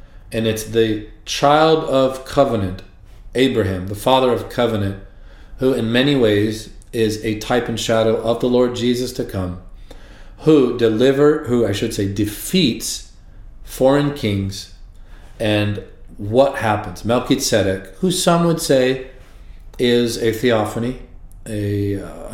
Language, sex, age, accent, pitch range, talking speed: English, male, 40-59, American, 100-125 Hz, 130 wpm